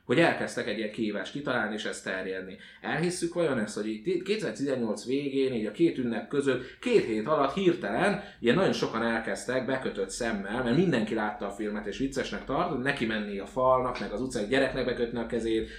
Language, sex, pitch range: Hungarian, male, 105-140 Hz